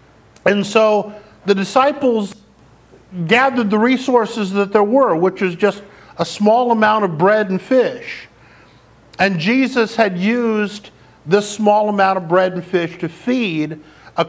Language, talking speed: English, 145 wpm